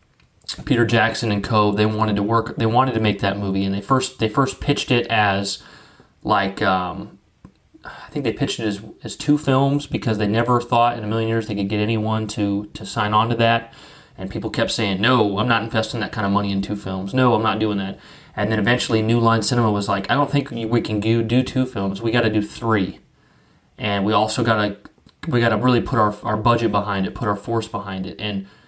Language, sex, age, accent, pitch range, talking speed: English, male, 30-49, American, 105-130 Hz, 240 wpm